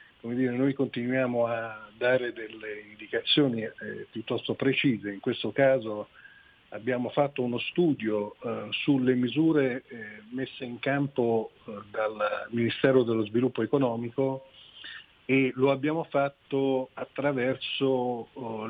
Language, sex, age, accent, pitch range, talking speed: Italian, male, 50-69, native, 120-140 Hz, 120 wpm